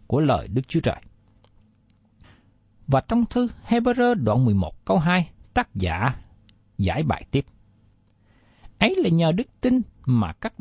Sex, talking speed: male, 140 wpm